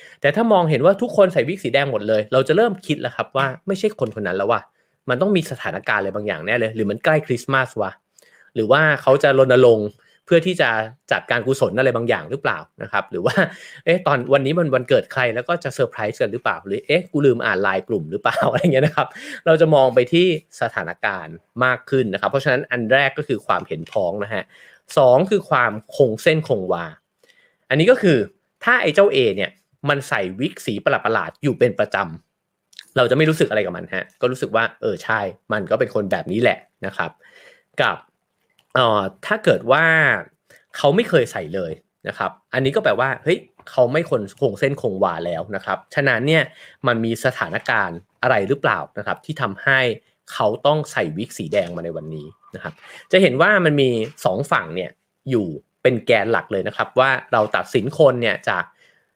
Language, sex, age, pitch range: English, male, 30-49, 120-170 Hz